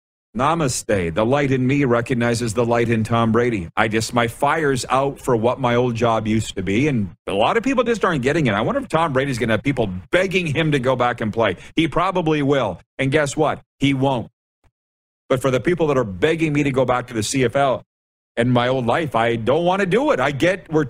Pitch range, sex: 110-140 Hz, male